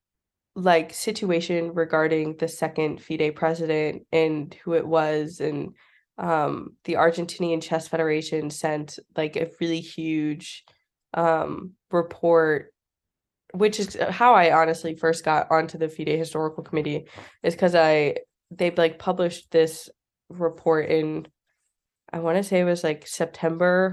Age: 20-39